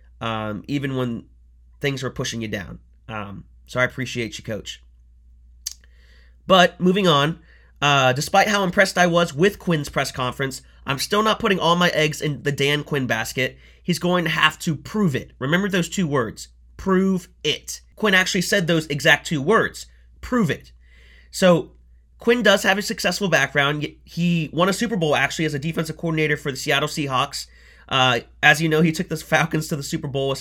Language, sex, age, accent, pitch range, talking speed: English, male, 30-49, American, 125-160 Hz, 185 wpm